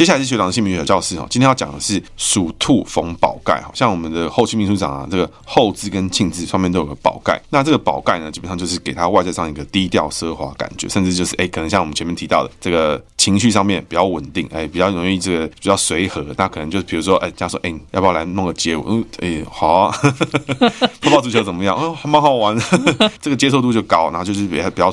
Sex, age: male, 20-39